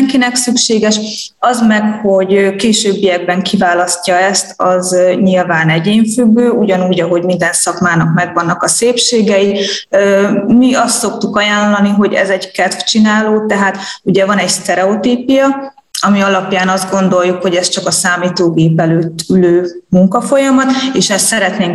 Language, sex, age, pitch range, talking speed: Hungarian, female, 20-39, 175-210 Hz, 125 wpm